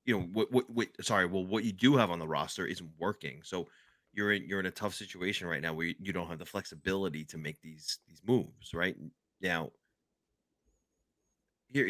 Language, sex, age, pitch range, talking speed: English, male, 30-49, 85-115 Hz, 200 wpm